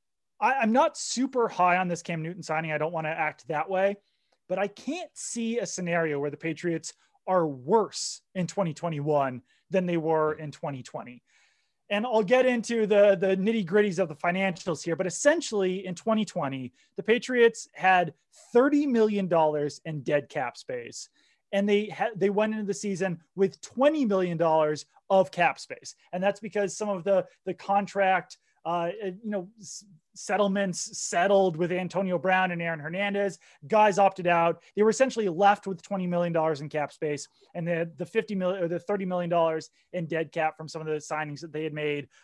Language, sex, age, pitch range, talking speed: English, male, 20-39, 160-200 Hz, 180 wpm